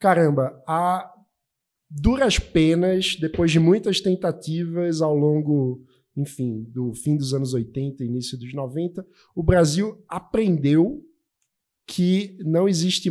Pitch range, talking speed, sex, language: 145-195 Hz, 115 wpm, male, Portuguese